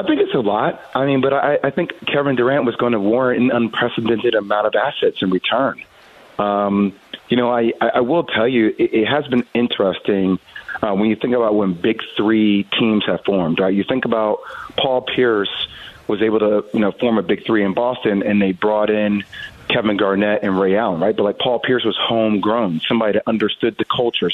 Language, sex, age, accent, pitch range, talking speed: English, male, 30-49, American, 105-125 Hz, 210 wpm